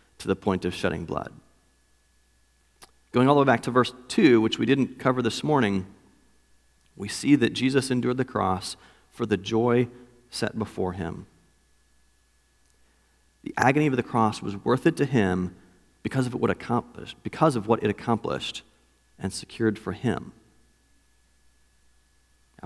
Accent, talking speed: American, 145 wpm